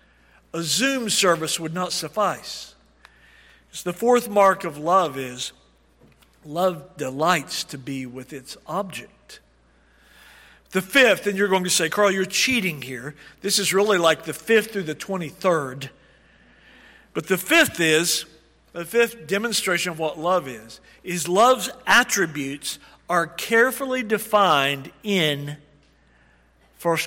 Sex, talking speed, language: male, 130 wpm, English